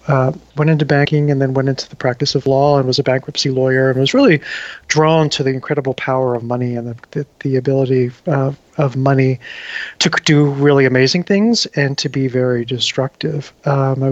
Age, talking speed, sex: 40-59, 195 wpm, male